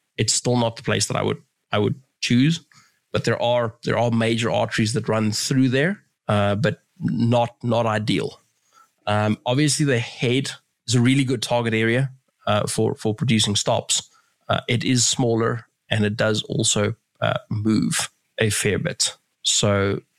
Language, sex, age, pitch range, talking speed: English, male, 20-39, 110-130 Hz, 165 wpm